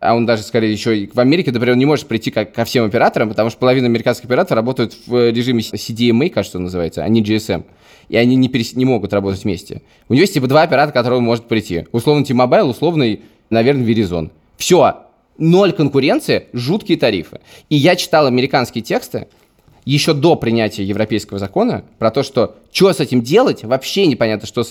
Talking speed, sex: 195 wpm, male